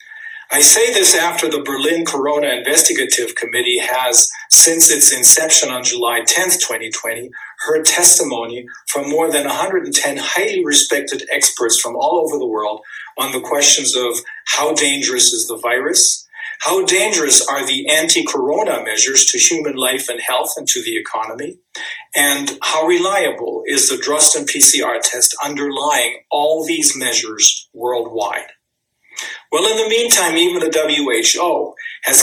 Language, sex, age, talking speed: English, male, 40-59, 140 wpm